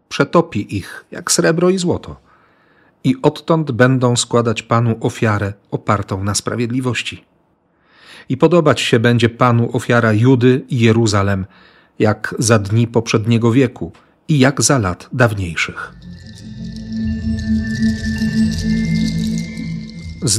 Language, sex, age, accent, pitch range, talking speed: Polish, male, 40-59, native, 110-135 Hz, 105 wpm